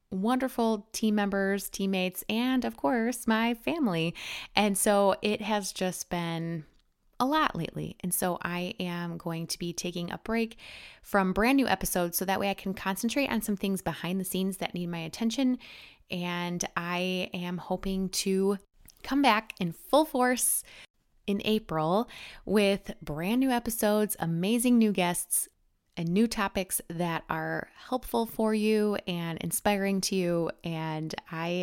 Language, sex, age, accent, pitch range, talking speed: English, female, 20-39, American, 175-220 Hz, 155 wpm